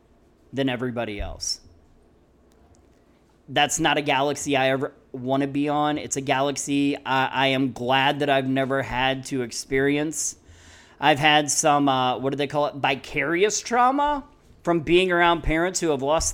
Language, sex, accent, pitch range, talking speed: English, male, American, 130-155 Hz, 160 wpm